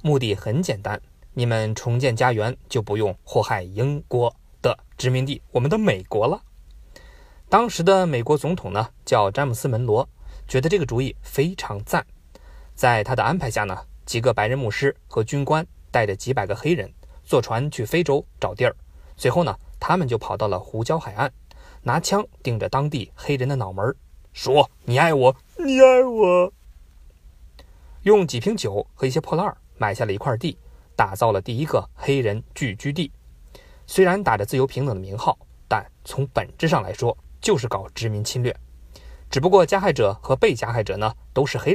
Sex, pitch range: male, 105-150 Hz